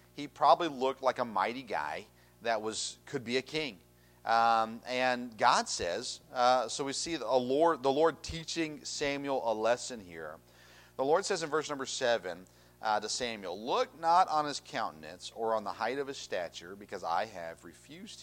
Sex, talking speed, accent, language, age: male, 180 wpm, American, English, 40-59